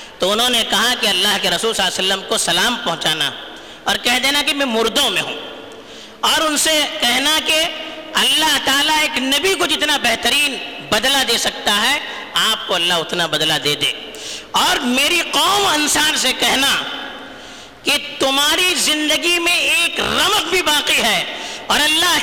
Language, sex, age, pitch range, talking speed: Urdu, female, 50-69, 225-320 Hz, 170 wpm